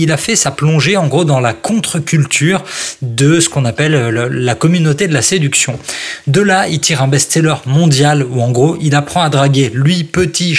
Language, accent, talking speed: French, French, 200 wpm